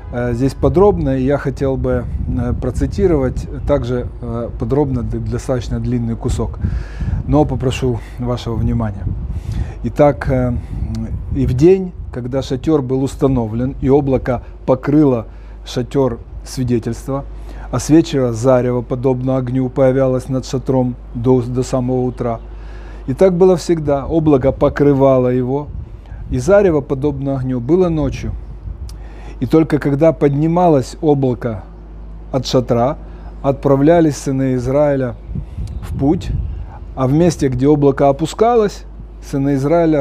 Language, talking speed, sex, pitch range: Russian, 110 wpm, male, 120-145 Hz